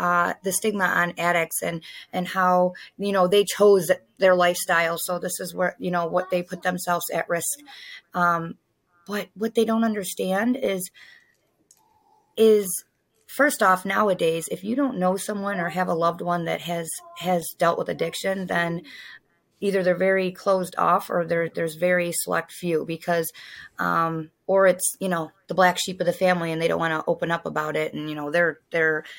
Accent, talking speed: American, 185 wpm